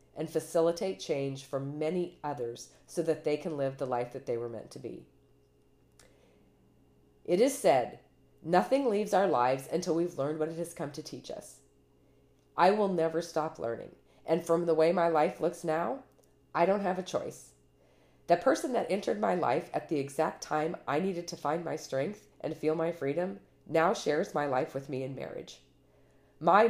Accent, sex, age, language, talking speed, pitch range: American, female, 40-59, English, 185 wpm, 140-175 Hz